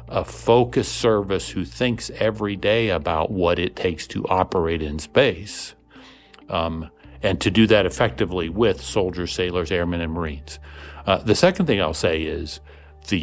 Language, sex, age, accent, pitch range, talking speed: English, male, 60-79, American, 80-105 Hz, 160 wpm